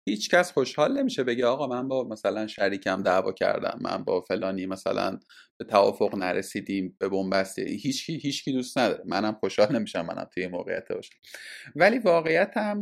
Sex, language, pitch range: male, Persian, 115-185 Hz